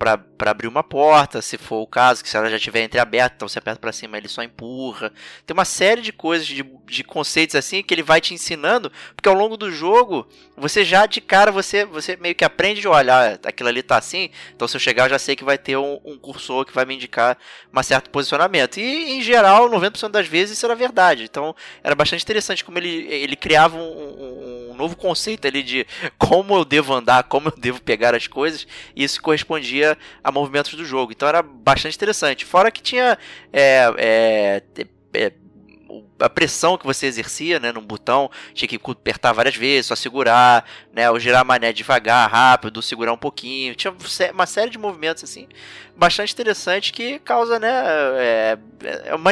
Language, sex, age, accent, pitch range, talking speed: Portuguese, male, 20-39, Brazilian, 125-195 Hz, 195 wpm